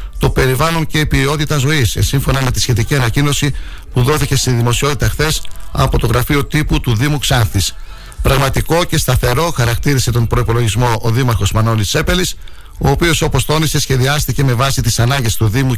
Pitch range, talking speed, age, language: 110-140 Hz, 165 wpm, 60-79, Greek